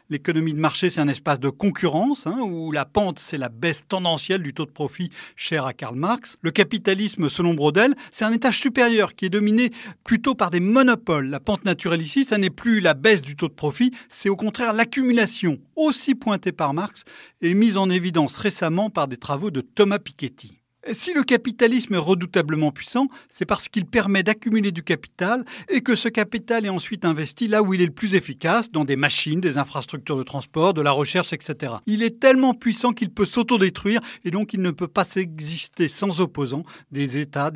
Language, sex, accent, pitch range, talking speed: French, male, French, 155-225 Hz, 205 wpm